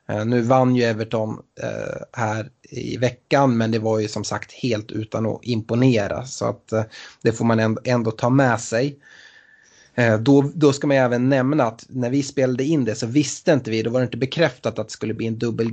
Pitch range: 110-135 Hz